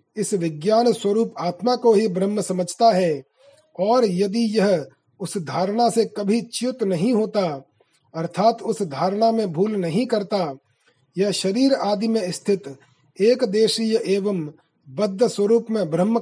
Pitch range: 180-220 Hz